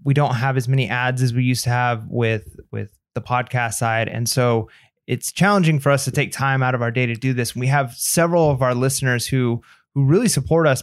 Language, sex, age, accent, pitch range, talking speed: English, male, 20-39, American, 125-145 Hz, 240 wpm